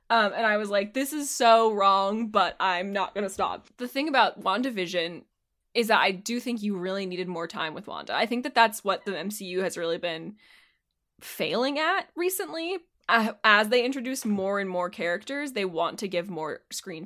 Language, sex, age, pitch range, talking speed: English, female, 20-39, 190-245 Hz, 200 wpm